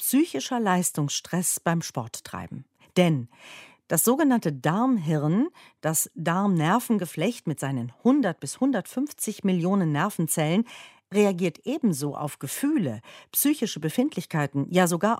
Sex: female